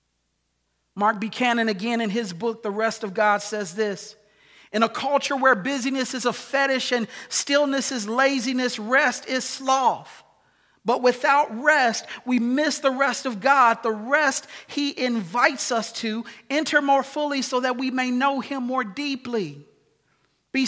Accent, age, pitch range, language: American, 50-69, 215-270 Hz, English